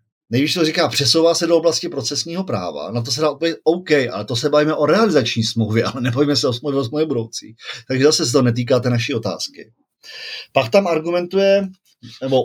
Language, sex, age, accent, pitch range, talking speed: Czech, male, 40-59, native, 120-150 Hz, 190 wpm